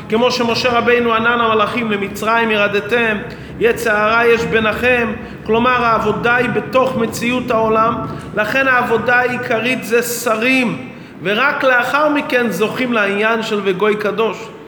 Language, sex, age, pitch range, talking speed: English, male, 30-49, 210-250 Hz, 120 wpm